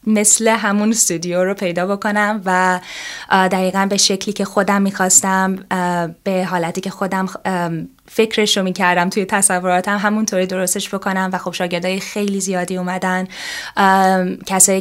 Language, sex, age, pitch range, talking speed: Persian, female, 10-29, 175-205 Hz, 125 wpm